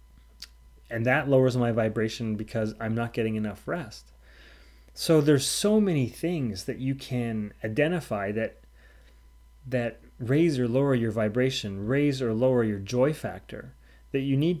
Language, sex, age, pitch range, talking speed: English, male, 30-49, 100-130 Hz, 150 wpm